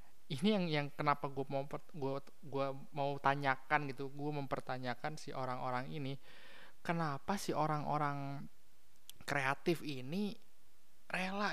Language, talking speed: Indonesian, 120 wpm